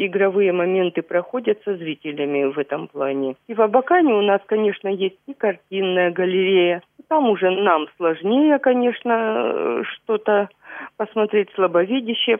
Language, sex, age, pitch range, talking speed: Russian, female, 40-59, 185-230 Hz, 125 wpm